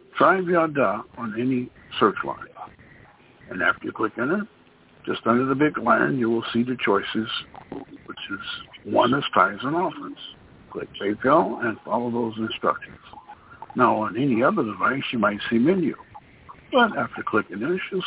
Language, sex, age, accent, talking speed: English, male, 60-79, American, 165 wpm